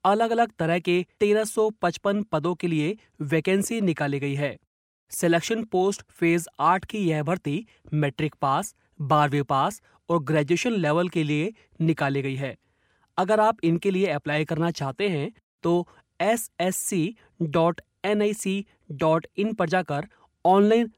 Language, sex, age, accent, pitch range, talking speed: Hindi, male, 30-49, native, 150-195 Hz, 125 wpm